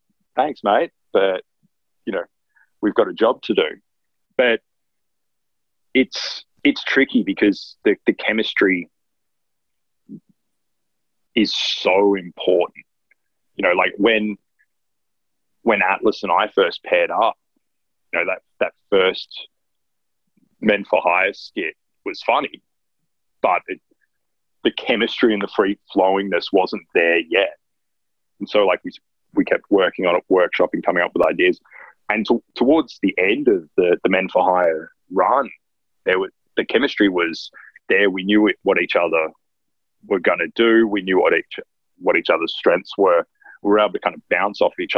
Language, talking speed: English, 155 wpm